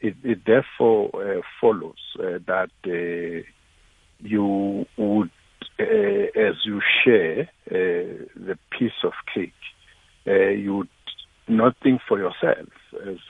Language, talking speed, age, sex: English, 115 wpm, 60-79, male